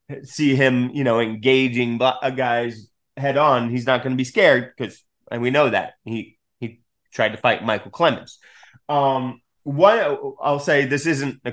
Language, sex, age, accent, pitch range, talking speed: English, male, 30-49, American, 115-140 Hz, 170 wpm